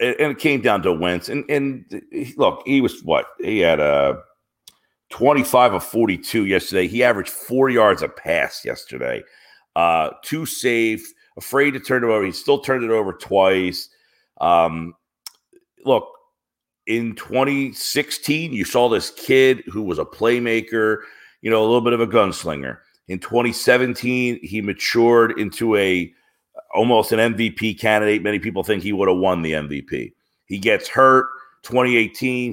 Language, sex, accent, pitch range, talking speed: English, male, American, 105-130 Hz, 155 wpm